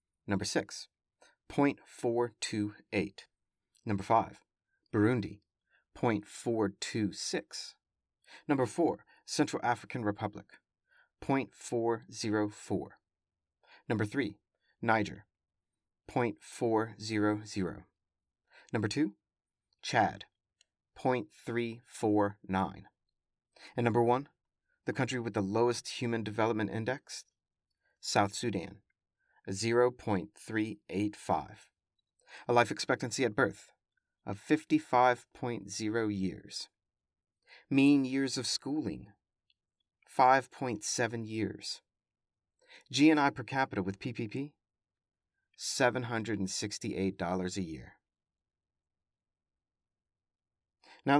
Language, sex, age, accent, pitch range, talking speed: English, male, 30-49, American, 100-125 Hz, 70 wpm